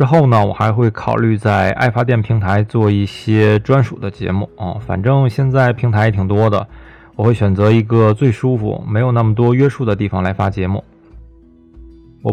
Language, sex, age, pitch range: Chinese, male, 20-39, 105-135 Hz